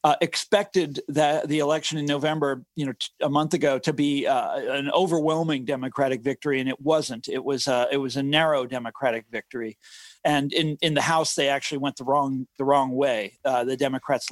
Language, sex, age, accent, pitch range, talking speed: English, male, 40-59, American, 140-170 Hz, 200 wpm